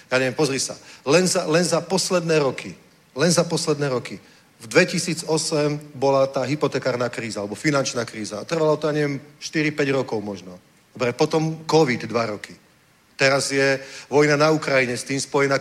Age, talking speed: 40-59, 160 wpm